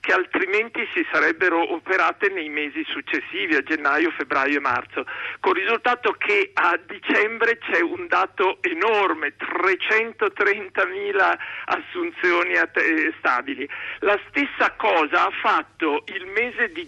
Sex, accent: male, native